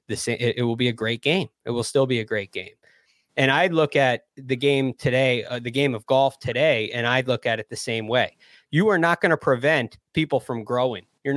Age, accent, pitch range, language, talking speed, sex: 20-39, American, 130-160 Hz, English, 245 wpm, male